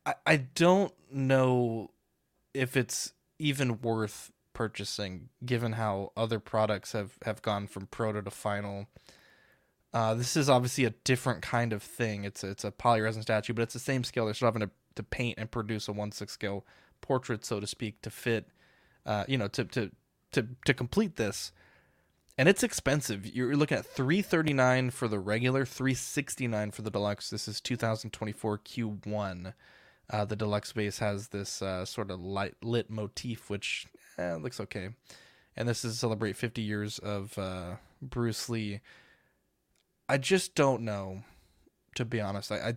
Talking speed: 180 wpm